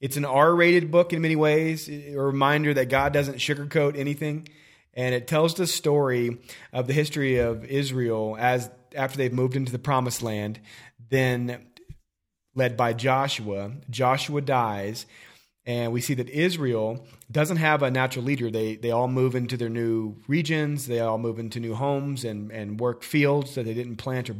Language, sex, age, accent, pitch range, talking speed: English, male, 30-49, American, 115-140 Hz, 175 wpm